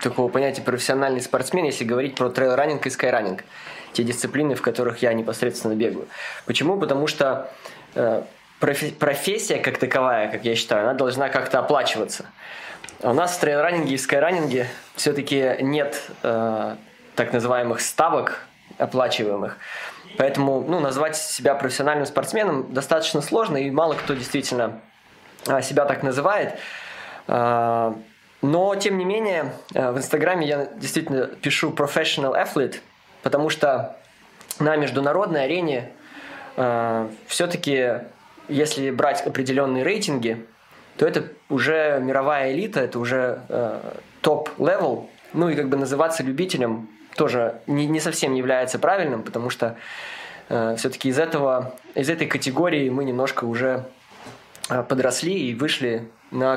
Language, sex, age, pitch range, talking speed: Russian, male, 20-39, 125-150 Hz, 125 wpm